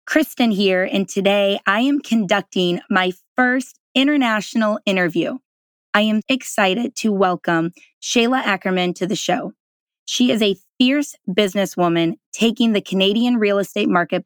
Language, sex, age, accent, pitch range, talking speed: English, female, 20-39, American, 190-240 Hz, 135 wpm